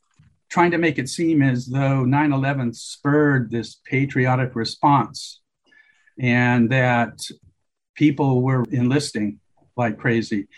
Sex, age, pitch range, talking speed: male, 50-69, 130-155 Hz, 110 wpm